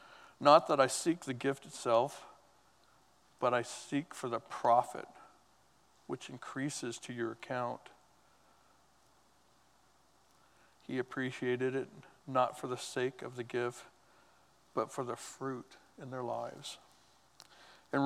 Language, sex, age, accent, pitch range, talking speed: English, male, 60-79, American, 120-135 Hz, 120 wpm